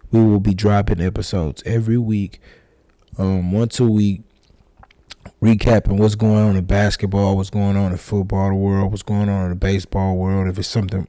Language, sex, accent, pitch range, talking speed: English, male, American, 100-120 Hz, 185 wpm